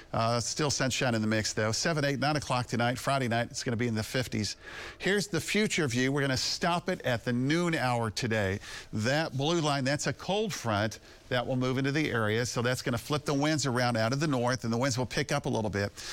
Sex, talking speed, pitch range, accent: male, 255 wpm, 115-145 Hz, American